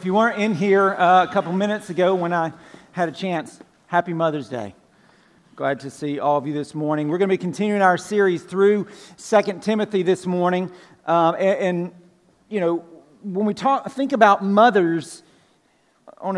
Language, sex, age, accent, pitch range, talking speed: English, male, 40-59, American, 185-230 Hz, 185 wpm